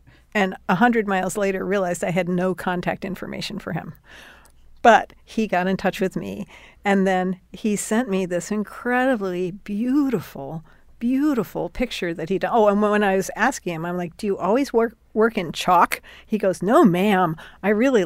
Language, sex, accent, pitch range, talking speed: English, female, American, 180-225 Hz, 180 wpm